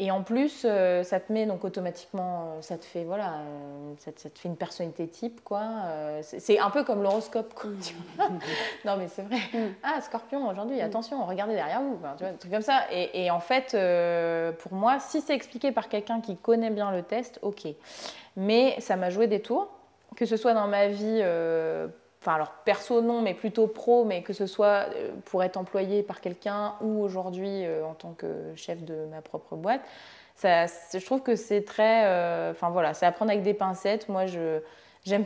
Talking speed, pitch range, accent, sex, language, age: 205 wpm, 180-225 Hz, French, female, French, 20-39